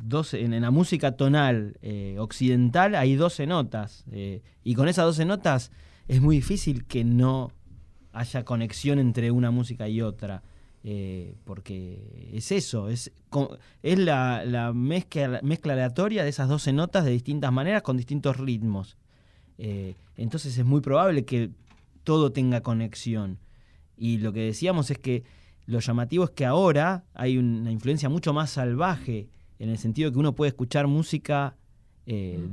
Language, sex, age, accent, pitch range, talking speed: Spanish, male, 20-39, Argentinian, 110-145 Hz, 155 wpm